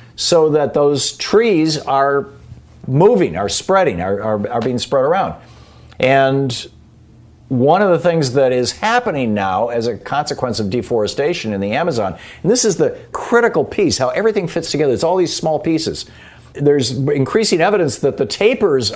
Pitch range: 120-155 Hz